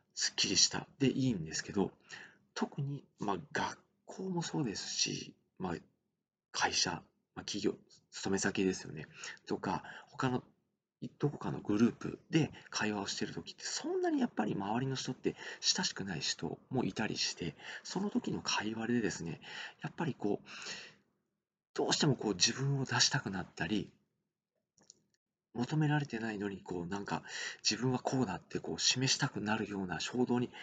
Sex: male